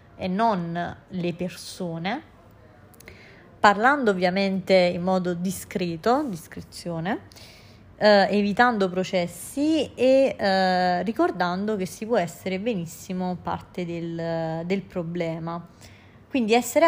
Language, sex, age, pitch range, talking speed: Italian, female, 30-49, 170-205 Hz, 90 wpm